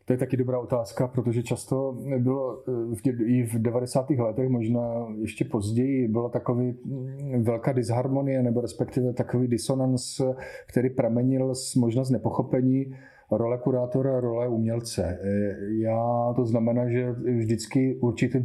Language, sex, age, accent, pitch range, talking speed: Czech, male, 40-59, native, 115-130 Hz, 130 wpm